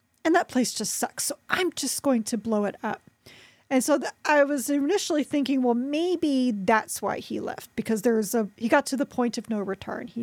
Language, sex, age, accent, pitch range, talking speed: English, female, 40-59, American, 225-285 Hz, 225 wpm